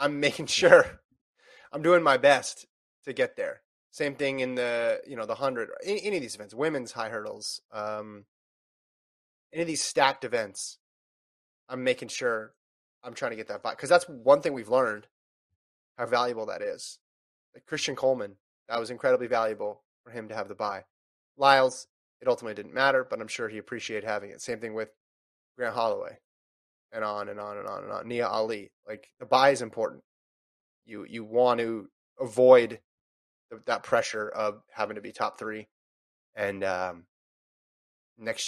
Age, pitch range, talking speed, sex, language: 20-39, 105-175 Hz, 175 wpm, male, English